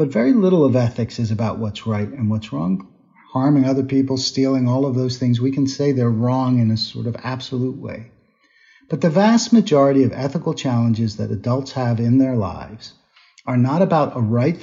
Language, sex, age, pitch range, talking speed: English, male, 50-69, 115-145 Hz, 200 wpm